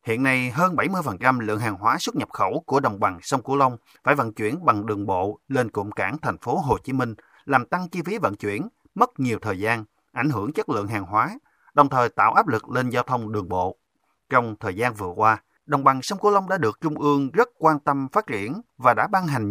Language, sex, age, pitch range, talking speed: Vietnamese, male, 30-49, 110-150 Hz, 245 wpm